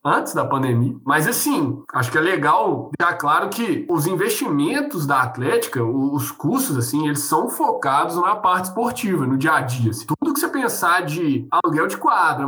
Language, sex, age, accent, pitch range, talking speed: Portuguese, male, 20-39, Brazilian, 145-220 Hz, 180 wpm